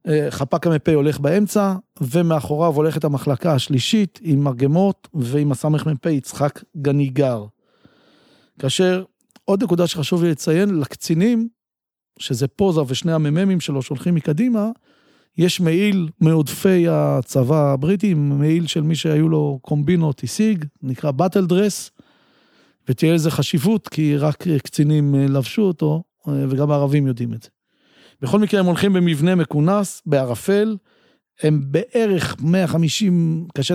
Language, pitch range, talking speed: Hebrew, 145-180 Hz, 120 wpm